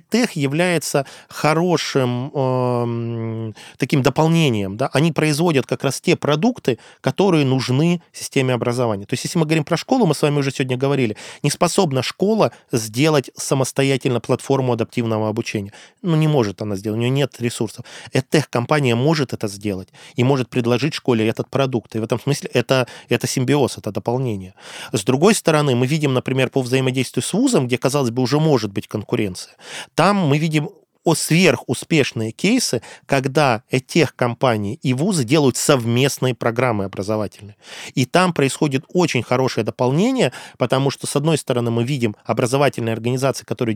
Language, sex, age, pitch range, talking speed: Russian, male, 20-39, 120-150 Hz, 155 wpm